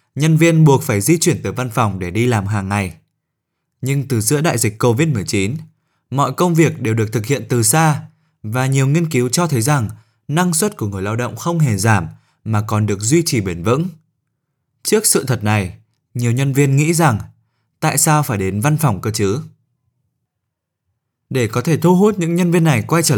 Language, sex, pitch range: Vietnamese, male, 110-155 Hz